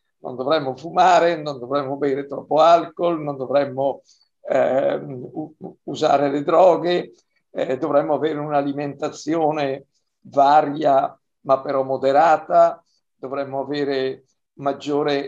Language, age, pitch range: Italian, 50-69, 140-170 Hz